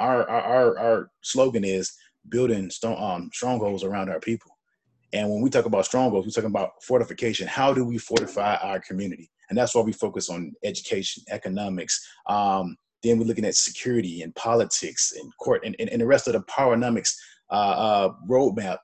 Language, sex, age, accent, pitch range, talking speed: English, male, 30-49, American, 100-130 Hz, 175 wpm